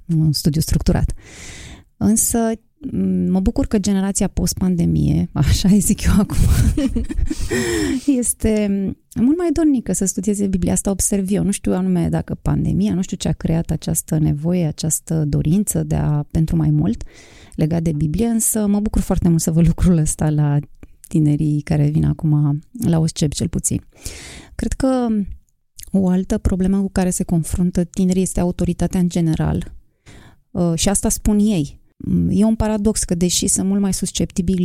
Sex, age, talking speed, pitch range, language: female, 20-39, 160 wpm, 155-200 Hz, Romanian